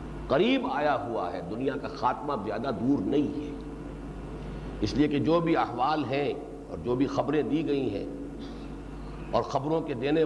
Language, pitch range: Urdu, 140-220 Hz